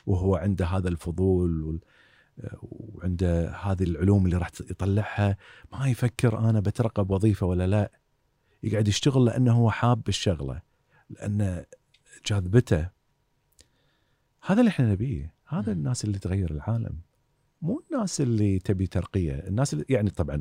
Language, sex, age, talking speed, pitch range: Arabic, male, 40-59, 125 wpm, 95-130 Hz